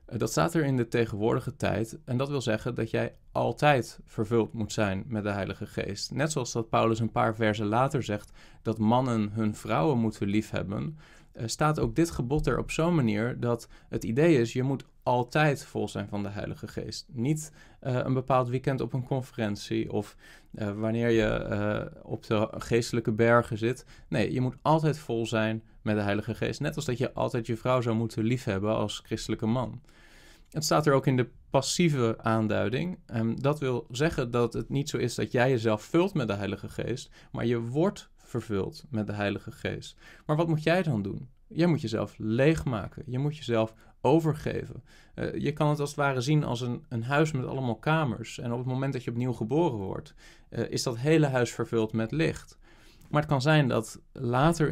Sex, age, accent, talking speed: male, 20-39, Dutch, 200 wpm